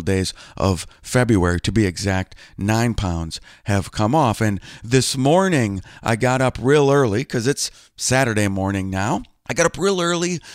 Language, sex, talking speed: English, male, 165 wpm